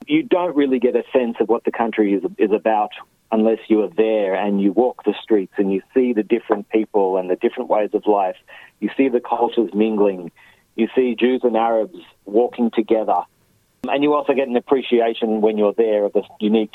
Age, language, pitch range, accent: 40-59, English, 105-125 Hz, Australian